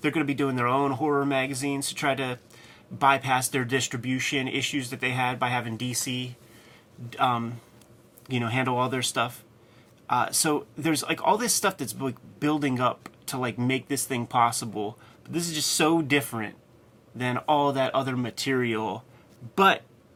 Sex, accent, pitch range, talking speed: male, American, 120-135 Hz, 175 wpm